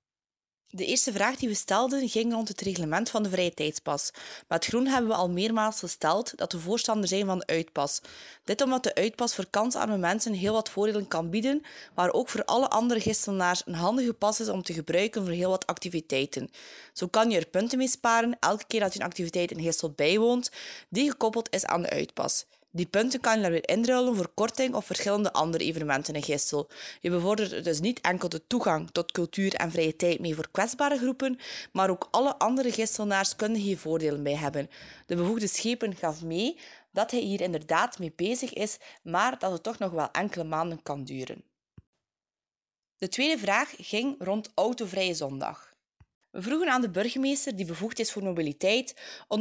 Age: 20-39